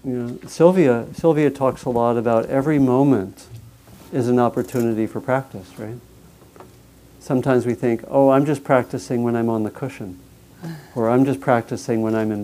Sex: male